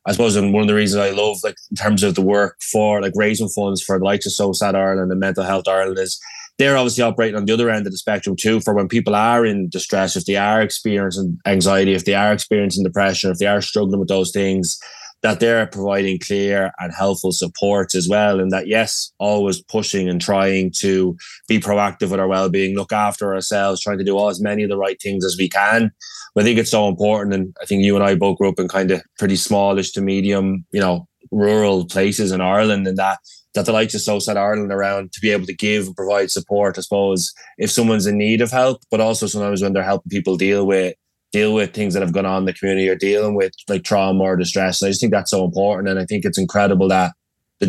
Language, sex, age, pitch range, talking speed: English, male, 20-39, 95-105 Hz, 250 wpm